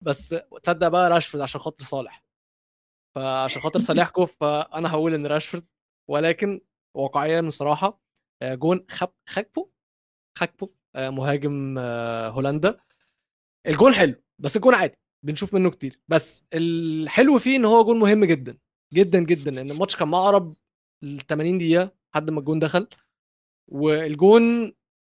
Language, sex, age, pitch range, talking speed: Arabic, male, 20-39, 140-180 Hz, 125 wpm